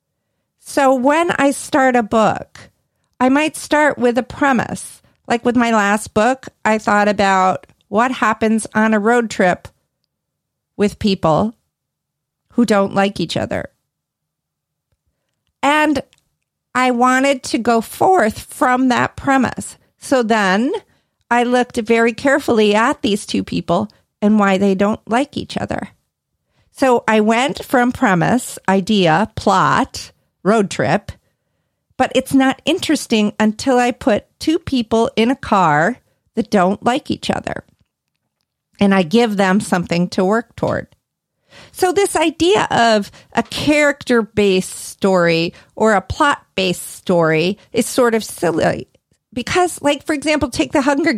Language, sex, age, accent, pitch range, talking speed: English, female, 40-59, American, 205-275 Hz, 135 wpm